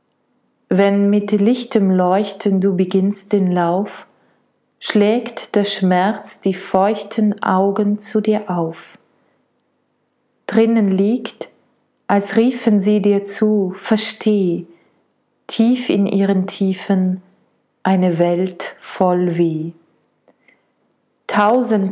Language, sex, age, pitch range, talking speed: German, female, 30-49, 185-215 Hz, 95 wpm